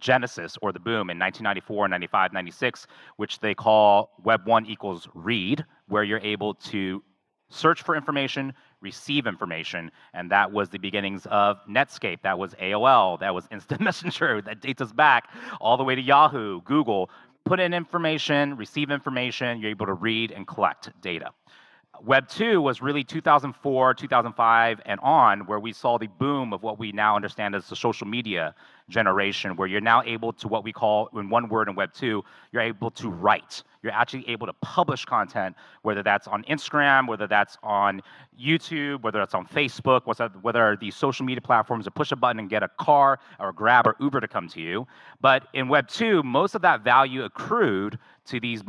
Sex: male